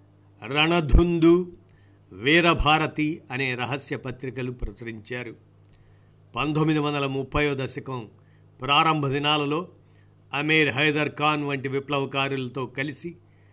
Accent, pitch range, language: native, 125-155 Hz, Telugu